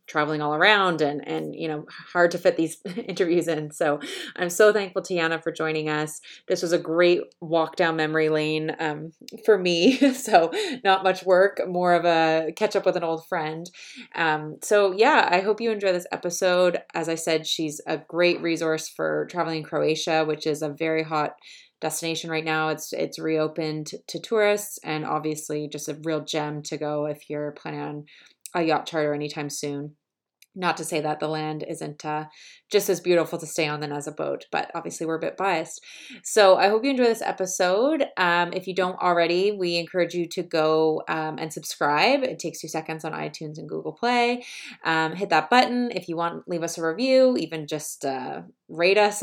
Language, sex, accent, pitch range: English, female, American, 155-190 Hz